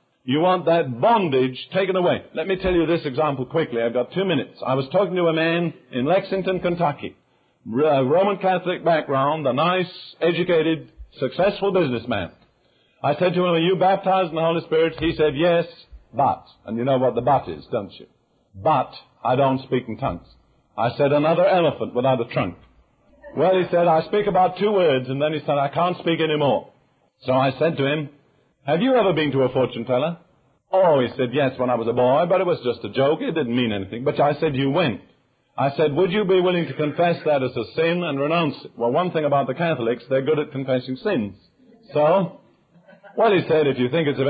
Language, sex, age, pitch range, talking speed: English, male, 50-69, 130-175 Hz, 215 wpm